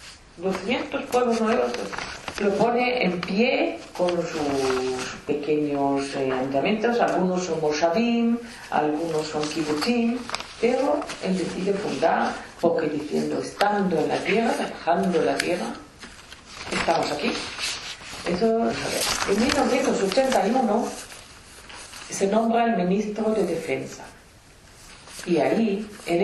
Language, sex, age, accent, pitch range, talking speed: English, female, 40-59, Spanish, 160-225 Hz, 105 wpm